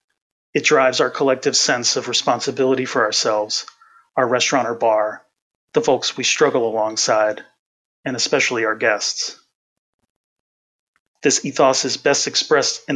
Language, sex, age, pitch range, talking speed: English, male, 30-49, 115-150 Hz, 130 wpm